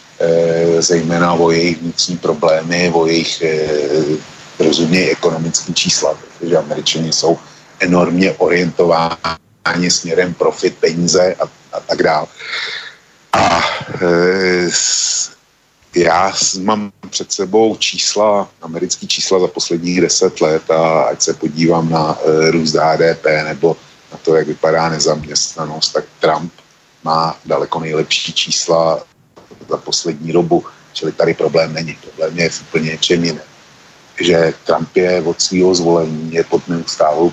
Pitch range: 80-90 Hz